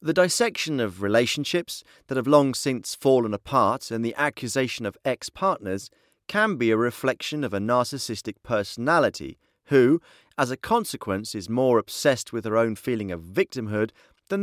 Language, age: Czech, 30-49